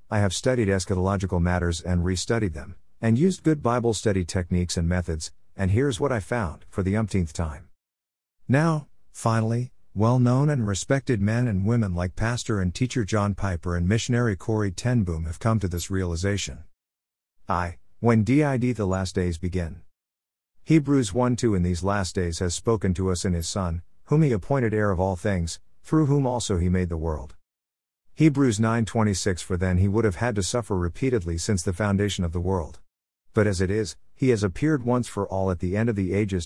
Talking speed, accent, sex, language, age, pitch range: 195 wpm, American, male, English, 50-69, 90-115 Hz